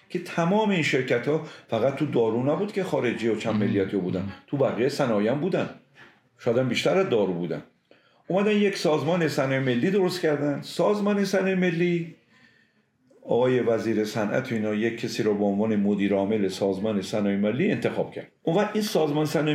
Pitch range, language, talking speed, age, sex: 110-170 Hz, Persian, 165 wpm, 50-69, male